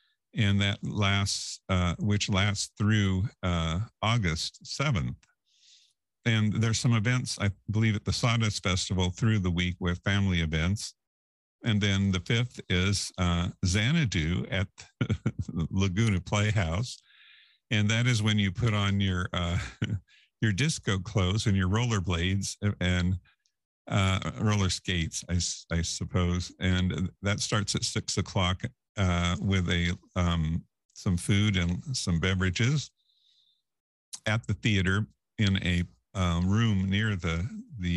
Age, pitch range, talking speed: 50-69, 90-110 Hz, 130 wpm